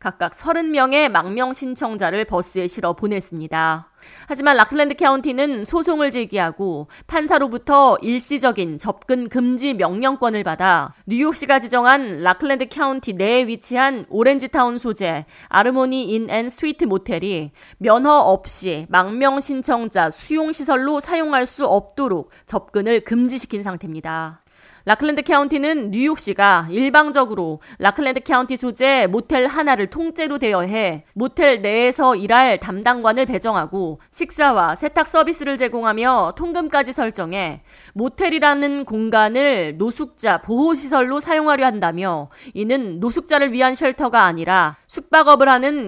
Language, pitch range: Korean, 200-280 Hz